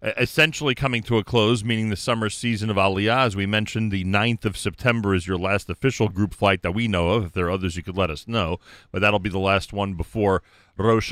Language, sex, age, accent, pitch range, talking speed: English, male, 40-59, American, 105-130 Hz, 245 wpm